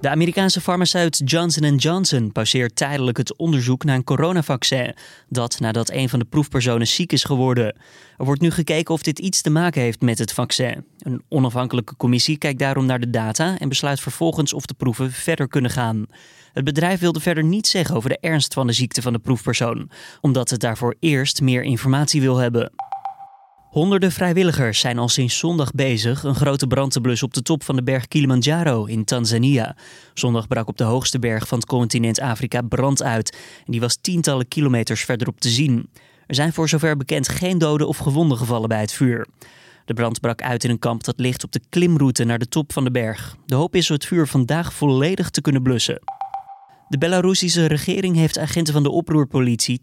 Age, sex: 20-39, male